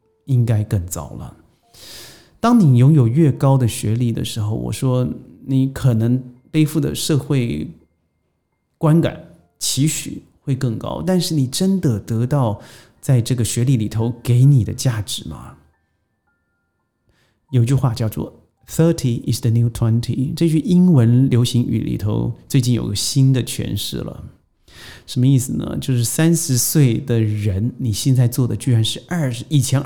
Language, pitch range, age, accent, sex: Chinese, 110-145 Hz, 30-49, native, male